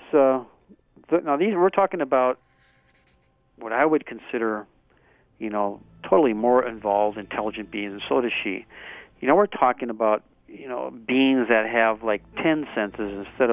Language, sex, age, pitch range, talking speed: English, male, 50-69, 110-140 Hz, 155 wpm